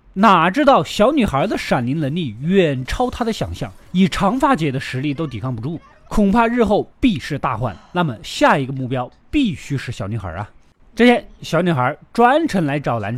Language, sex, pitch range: Chinese, male, 135-210 Hz